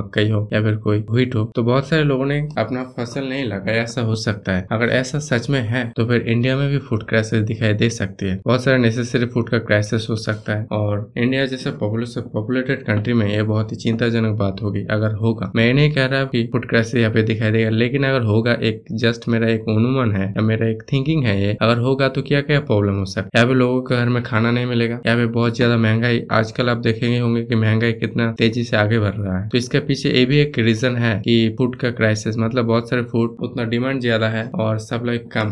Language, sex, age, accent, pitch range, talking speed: Hindi, male, 20-39, native, 110-125 Hz, 230 wpm